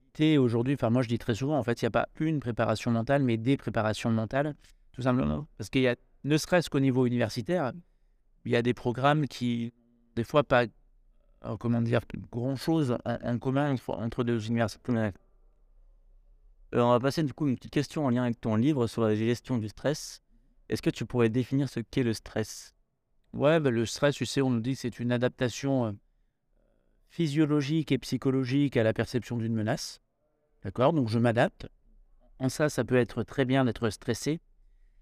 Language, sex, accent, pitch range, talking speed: French, male, French, 115-135 Hz, 190 wpm